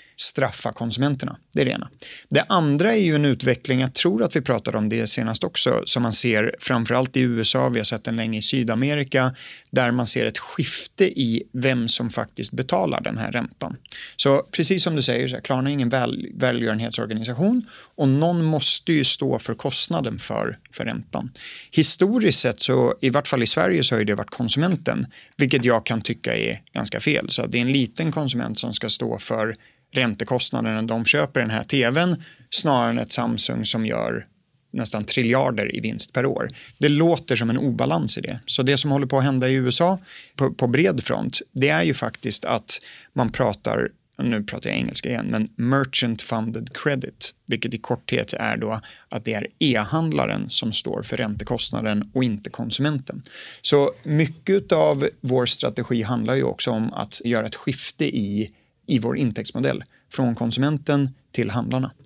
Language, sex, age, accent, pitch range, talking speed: Swedish, male, 30-49, native, 115-145 Hz, 185 wpm